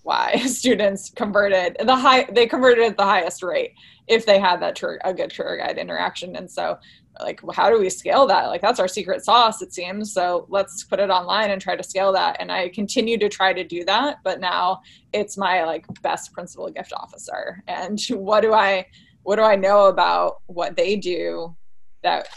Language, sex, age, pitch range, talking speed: English, female, 20-39, 185-225 Hz, 205 wpm